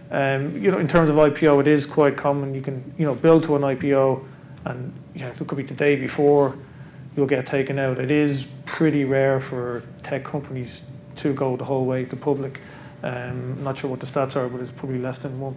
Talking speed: 230 wpm